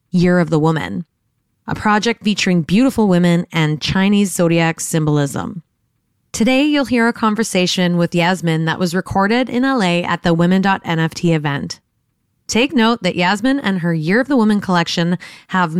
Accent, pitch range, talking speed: American, 170-210 Hz, 155 wpm